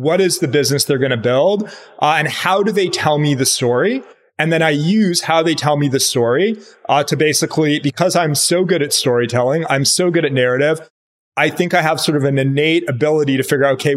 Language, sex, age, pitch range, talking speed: English, male, 30-49, 130-155 Hz, 230 wpm